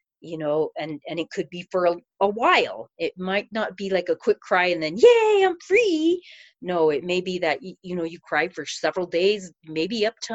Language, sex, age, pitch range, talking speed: English, female, 40-59, 165-210 Hz, 230 wpm